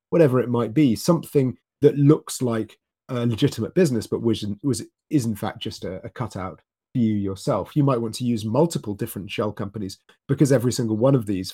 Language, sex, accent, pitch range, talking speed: English, male, British, 105-130 Hz, 200 wpm